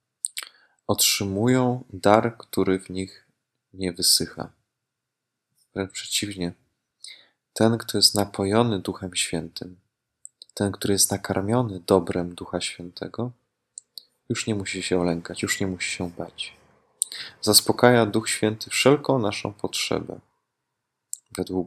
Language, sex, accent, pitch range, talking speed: Polish, male, native, 95-120 Hz, 105 wpm